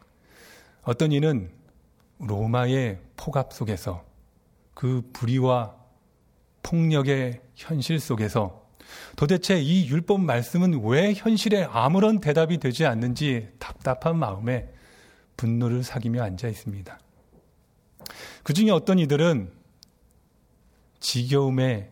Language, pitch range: Korean, 100-135 Hz